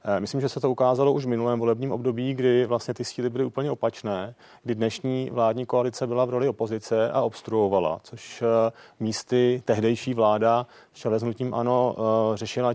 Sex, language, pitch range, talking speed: male, Czech, 110-130 Hz, 165 wpm